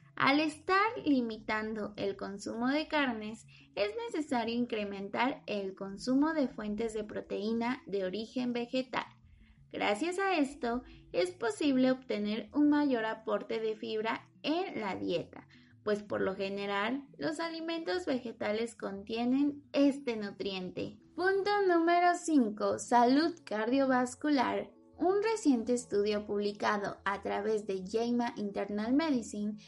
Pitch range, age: 210-295 Hz, 20-39